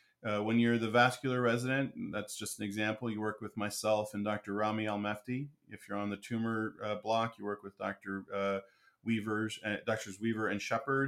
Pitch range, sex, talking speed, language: 100-120 Hz, male, 195 wpm, English